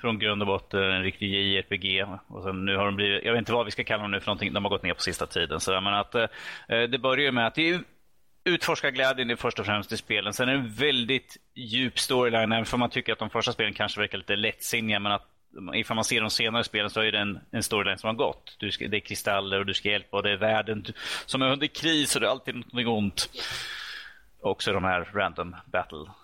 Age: 30-49